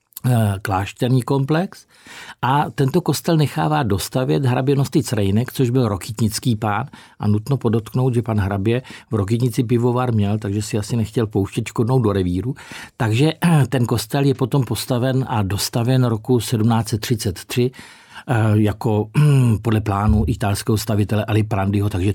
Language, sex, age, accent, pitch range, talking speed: Czech, male, 50-69, native, 105-130 Hz, 135 wpm